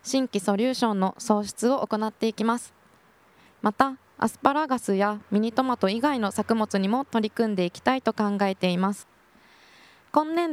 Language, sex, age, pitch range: Japanese, female, 20-39, 205-255 Hz